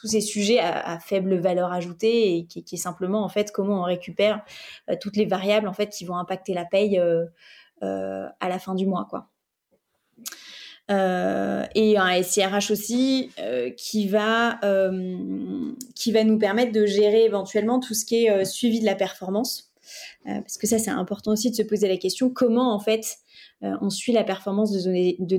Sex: female